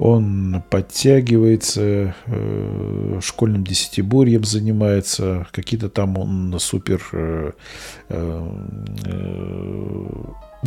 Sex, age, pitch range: male, 40-59, 90-110 Hz